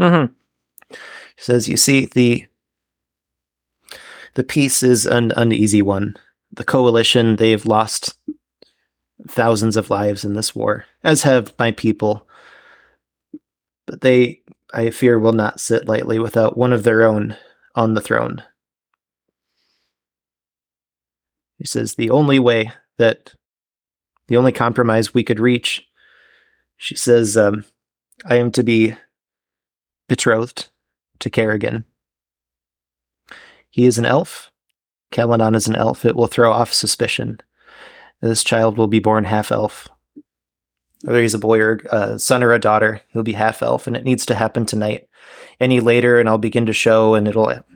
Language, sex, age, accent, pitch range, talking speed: English, male, 30-49, American, 110-120 Hz, 140 wpm